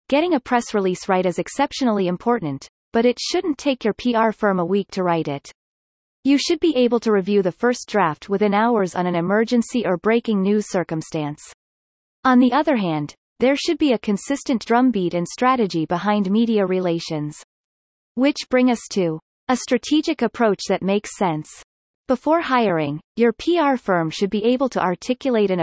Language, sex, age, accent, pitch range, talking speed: English, female, 30-49, American, 180-250 Hz, 175 wpm